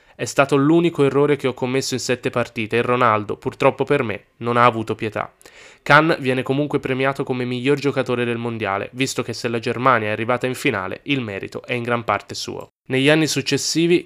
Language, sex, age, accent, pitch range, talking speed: Italian, male, 20-39, native, 120-145 Hz, 200 wpm